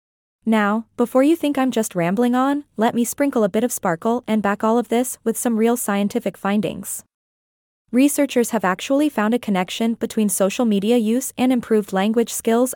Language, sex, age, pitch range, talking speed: English, female, 20-39, 200-250 Hz, 185 wpm